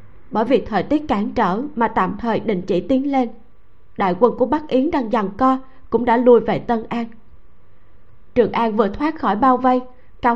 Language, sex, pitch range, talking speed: Vietnamese, female, 195-265 Hz, 205 wpm